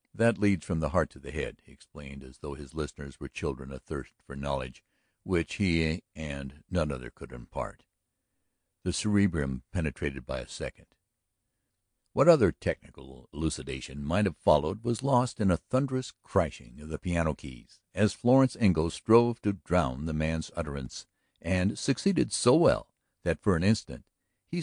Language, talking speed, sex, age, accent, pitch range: English, 165 wpm, male, 60-79, American, 75-115 Hz